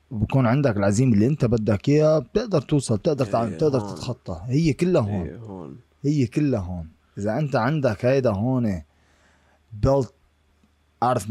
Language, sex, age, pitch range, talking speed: Arabic, male, 20-39, 95-130 Hz, 140 wpm